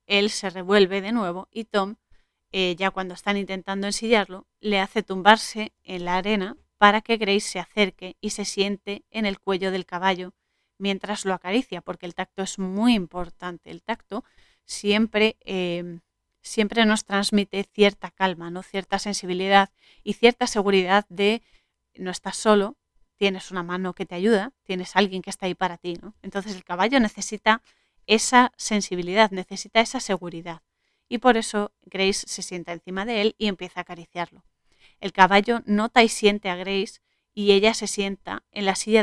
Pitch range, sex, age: 190-215 Hz, female, 30-49